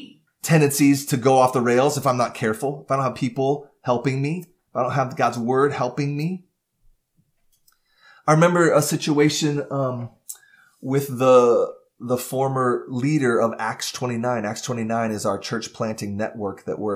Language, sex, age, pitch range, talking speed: English, male, 30-49, 115-145 Hz, 165 wpm